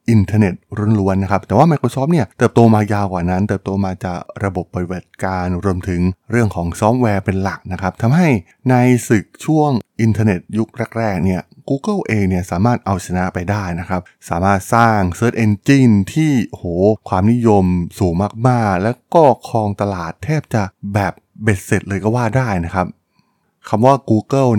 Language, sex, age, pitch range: Thai, male, 20-39, 95-120 Hz